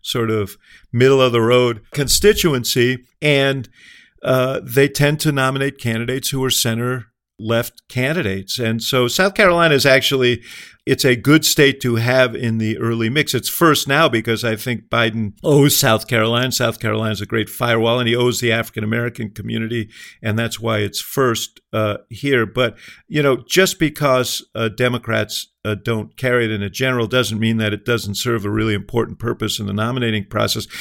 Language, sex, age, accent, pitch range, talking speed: English, male, 50-69, American, 110-130 Hz, 180 wpm